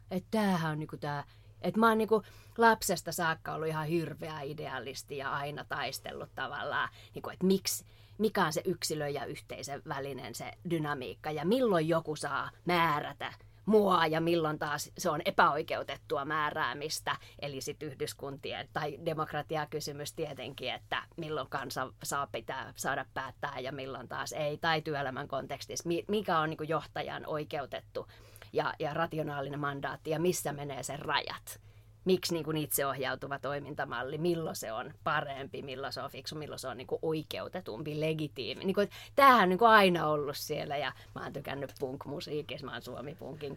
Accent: native